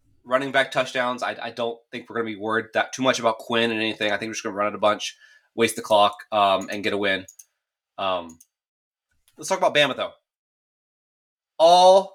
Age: 20-39